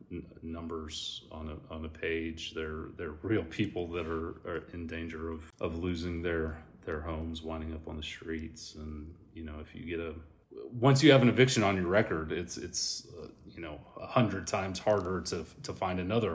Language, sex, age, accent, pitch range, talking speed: English, male, 30-49, American, 80-95 Hz, 200 wpm